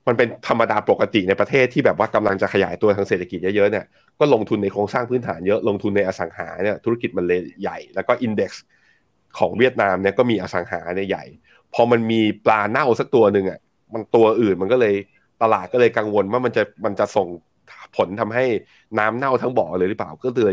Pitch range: 95-115 Hz